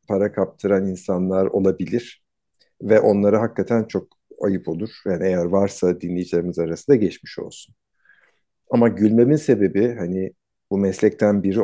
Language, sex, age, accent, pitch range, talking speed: Turkish, male, 50-69, native, 95-120 Hz, 130 wpm